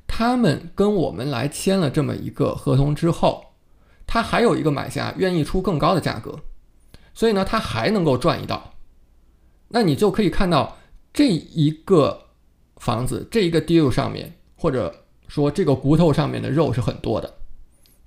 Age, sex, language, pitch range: 20-39, male, Chinese, 125-165 Hz